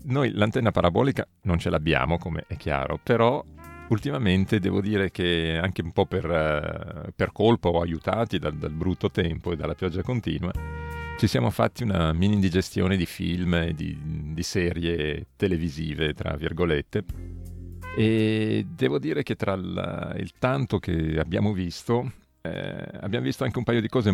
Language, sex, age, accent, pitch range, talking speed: Italian, male, 40-59, native, 85-105 Hz, 160 wpm